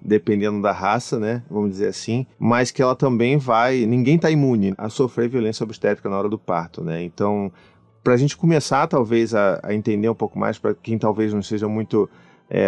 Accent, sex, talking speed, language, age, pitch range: Brazilian, male, 200 wpm, Portuguese, 30-49, 110-145 Hz